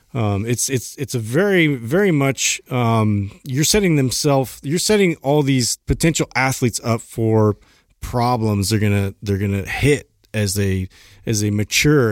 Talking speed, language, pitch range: 165 wpm, English, 105-135 Hz